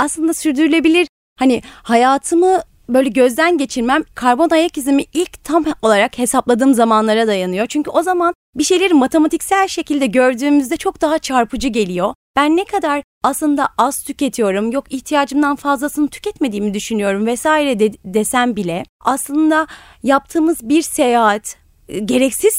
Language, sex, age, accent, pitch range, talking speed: Turkish, female, 30-49, native, 230-315 Hz, 130 wpm